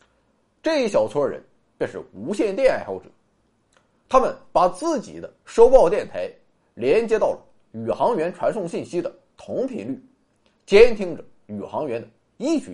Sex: male